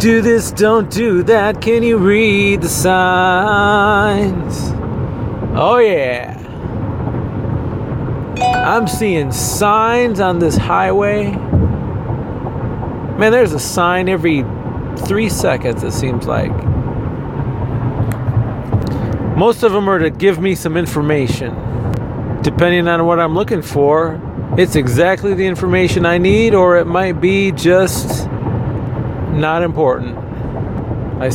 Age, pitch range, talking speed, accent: 30-49, 125-190 Hz, 110 wpm, American